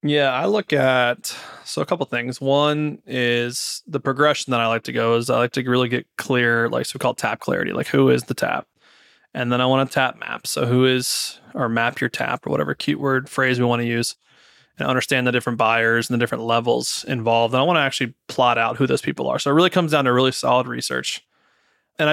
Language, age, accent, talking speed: English, 20-39, American, 240 wpm